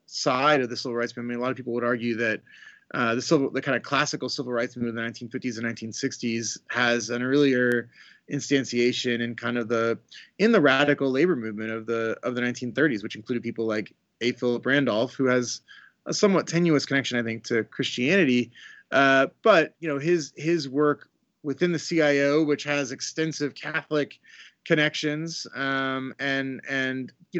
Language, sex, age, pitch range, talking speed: English, male, 30-49, 120-150 Hz, 180 wpm